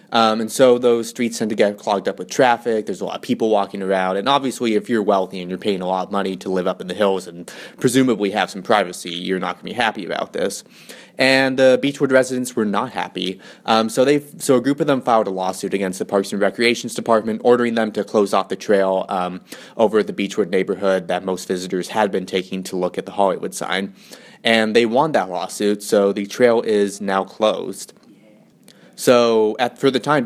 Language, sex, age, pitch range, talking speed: English, male, 20-39, 95-120 Hz, 225 wpm